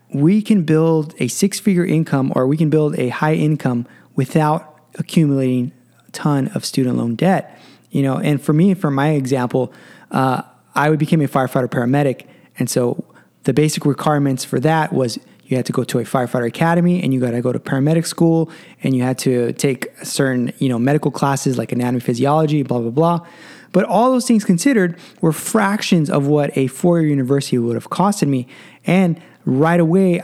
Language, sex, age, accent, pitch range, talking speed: English, male, 20-39, American, 135-175 Hz, 185 wpm